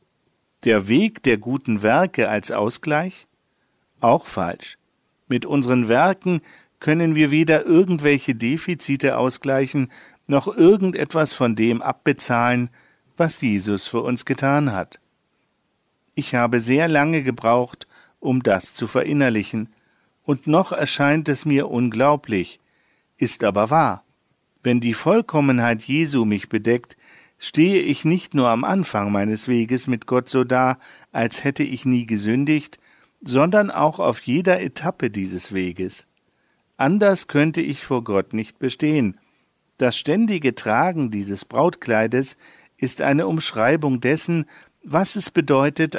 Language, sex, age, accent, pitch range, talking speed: German, male, 50-69, German, 120-155 Hz, 125 wpm